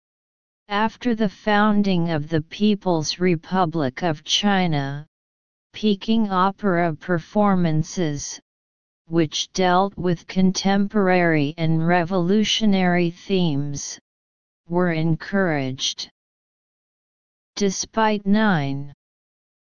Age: 40-59